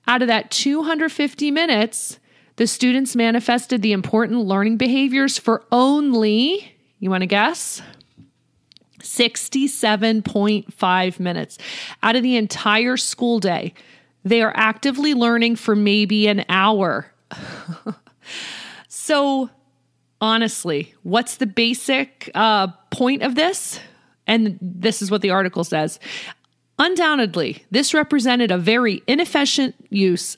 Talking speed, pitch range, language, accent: 115 wpm, 200-255 Hz, English, American